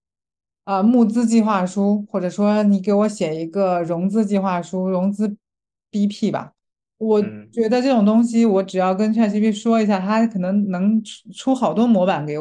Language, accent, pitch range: Chinese, native, 180-230 Hz